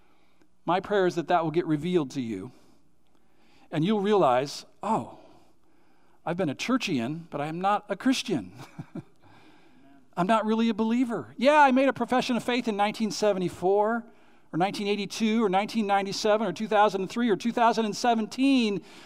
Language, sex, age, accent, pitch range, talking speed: English, male, 50-69, American, 200-275 Hz, 140 wpm